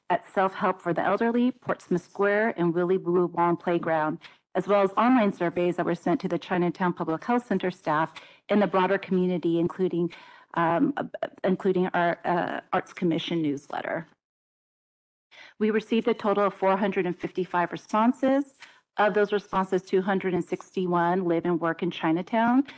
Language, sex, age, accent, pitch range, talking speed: English, female, 40-59, American, 175-205 Hz, 150 wpm